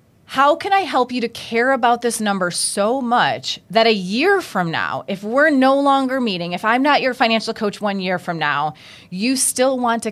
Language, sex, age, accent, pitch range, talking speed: English, female, 30-49, American, 185-240 Hz, 215 wpm